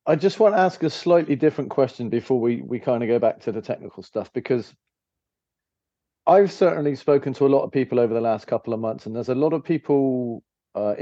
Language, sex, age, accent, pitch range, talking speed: English, male, 40-59, British, 110-140 Hz, 230 wpm